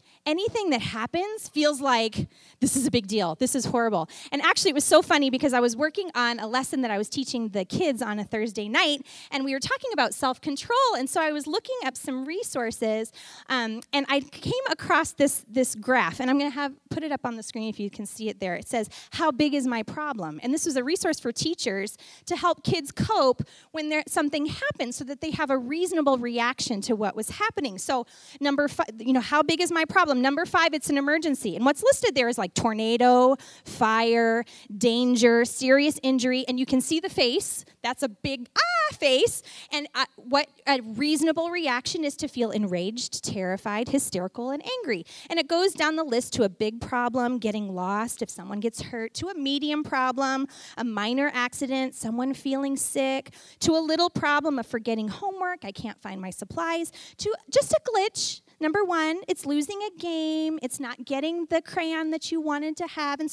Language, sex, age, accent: English, female, 30-49, American